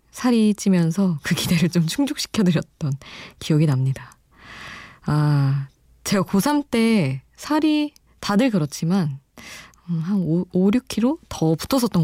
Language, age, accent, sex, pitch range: Korean, 20-39, native, female, 150-200 Hz